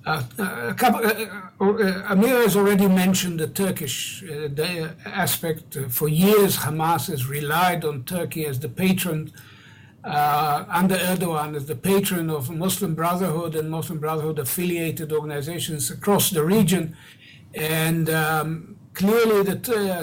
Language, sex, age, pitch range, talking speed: English, male, 60-79, 155-190 Hz, 135 wpm